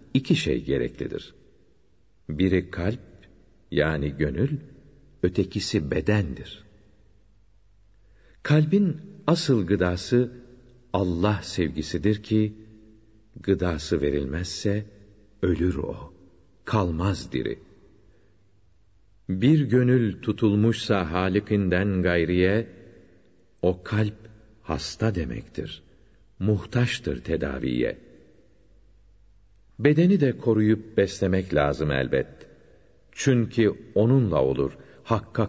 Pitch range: 90-115 Hz